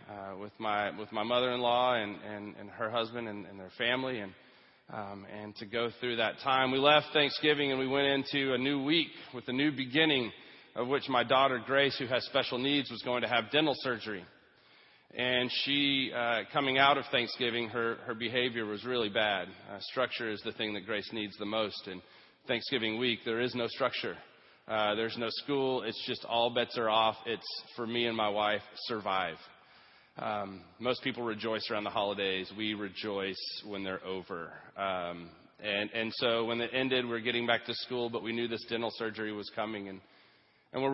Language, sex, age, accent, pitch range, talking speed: English, male, 30-49, American, 105-125 Hz, 195 wpm